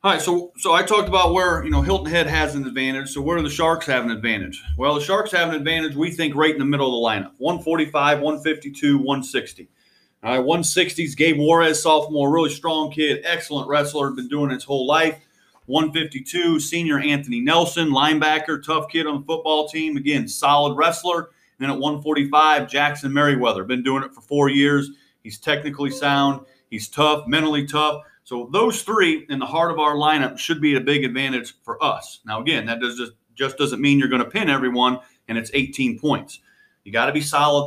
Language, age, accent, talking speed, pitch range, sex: English, 30-49, American, 205 wpm, 135-155 Hz, male